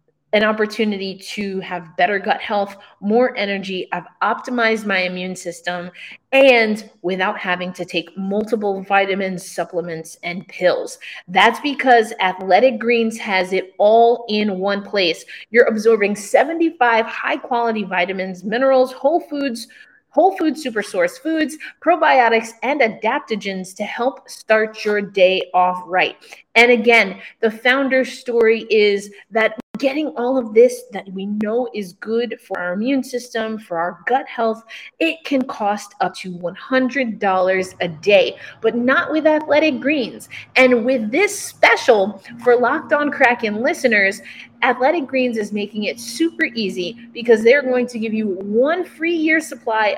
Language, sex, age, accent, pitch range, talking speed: English, female, 30-49, American, 195-260 Hz, 145 wpm